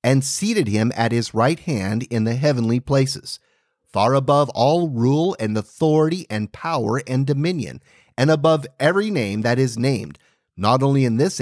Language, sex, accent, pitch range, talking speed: English, male, American, 120-165 Hz, 170 wpm